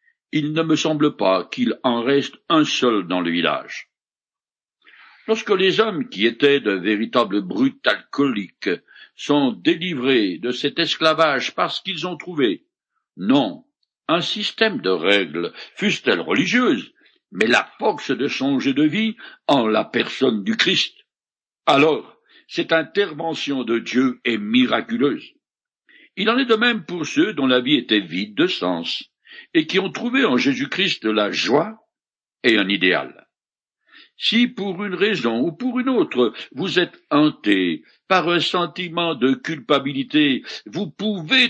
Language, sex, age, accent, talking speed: French, male, 60-79, French, 145 wpm